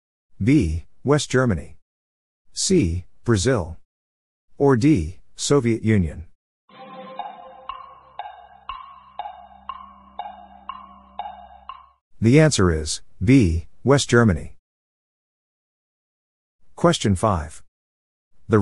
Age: 50-69